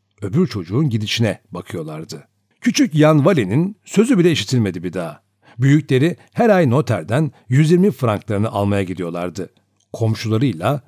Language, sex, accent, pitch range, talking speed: Turkish, male, native, 110-170 Hz, 115 wpm